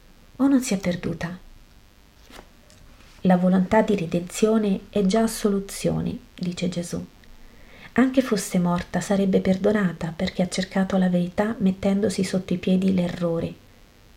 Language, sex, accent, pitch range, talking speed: Italian, female, native, 170-205 Hz, 125 wpm